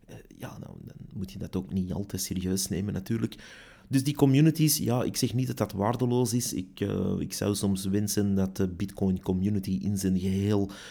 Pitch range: 95-110 Hz